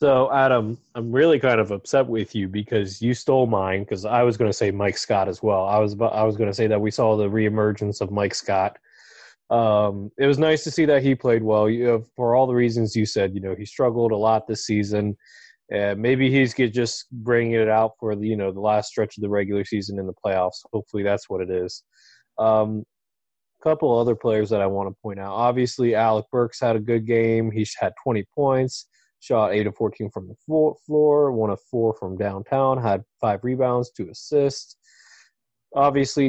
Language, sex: English, male